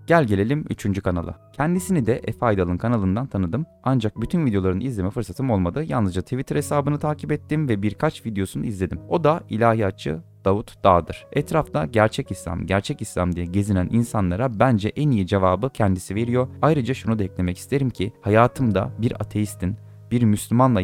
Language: Turkish